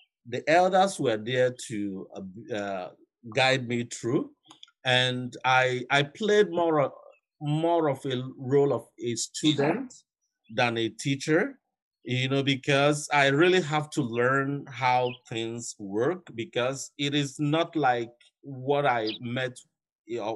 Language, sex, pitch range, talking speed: English, male, 120-150 Hz, 135 wpm